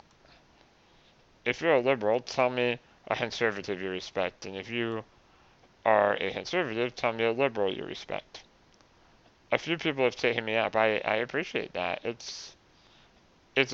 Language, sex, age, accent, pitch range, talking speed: English, male, 30-49, American, 105-130 Hz, 155 wpm